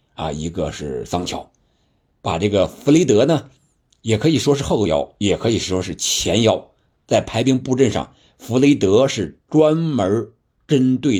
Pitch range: 90-125 Hz